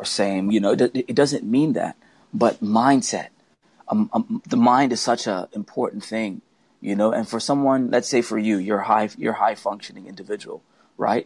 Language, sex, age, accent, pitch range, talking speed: English, male, 30-49, American, 105-145 Hz, 185 wpm